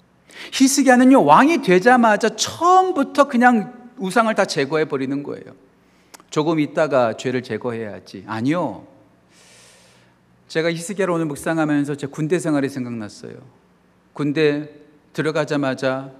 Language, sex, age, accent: Korean, male, 40-59, native